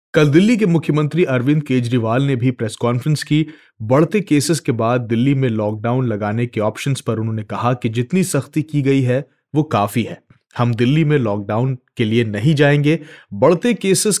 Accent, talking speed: native, 180 wpm